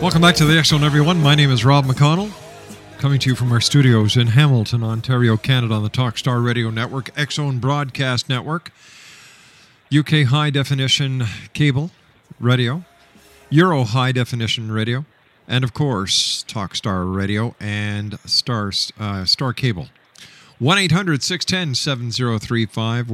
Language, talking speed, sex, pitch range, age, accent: English, 125 wpm, male, 110-145 Hz, 50-69, American